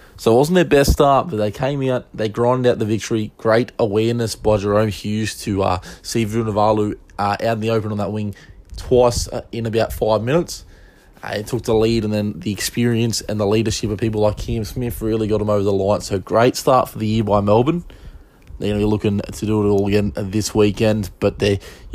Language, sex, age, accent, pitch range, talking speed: English, male, 20-39, Australian, 100-115 Hz, 220 wpm